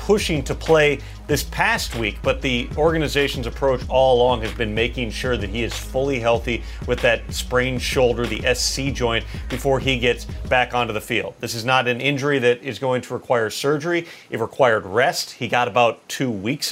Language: English